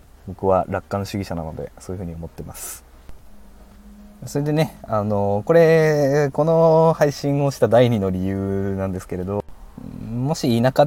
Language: Japanese